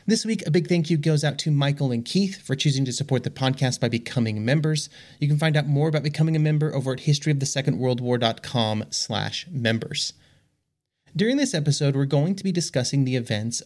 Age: 30-49